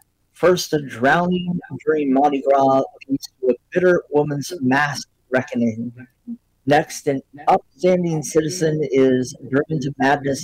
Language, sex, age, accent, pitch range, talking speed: English, male, 50-69, American, 135-165 Hz, 120 wpm